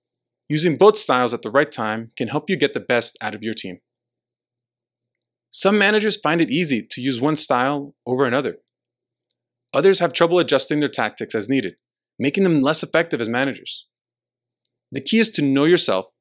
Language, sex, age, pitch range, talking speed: English, male, 30-49, 120-165 Hz, 180 wpm